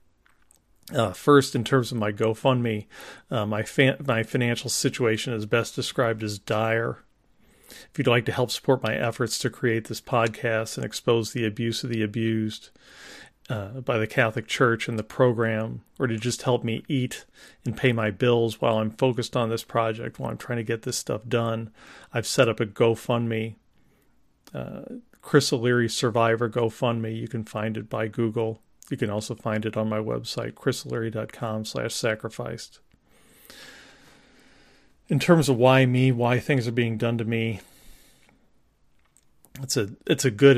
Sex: male